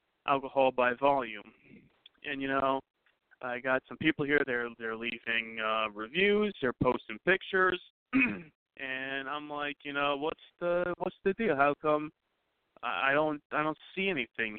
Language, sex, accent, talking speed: English, male, American, 155 wpm